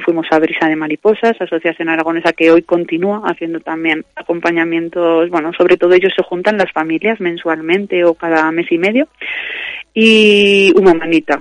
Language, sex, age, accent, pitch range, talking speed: Spanish, female, 30-49, Spanish, 160-180 Hz, 160 wpm